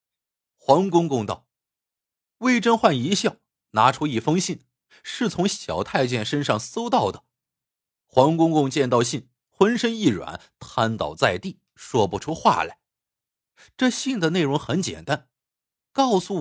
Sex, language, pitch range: male, Chinese, 125-200 Hz